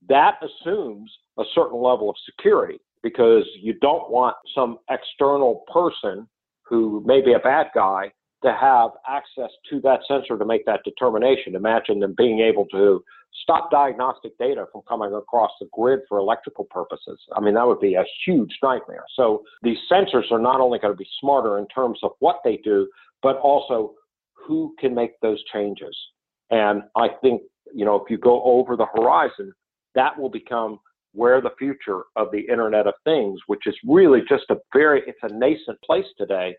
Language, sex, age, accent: English, male, 50-69, American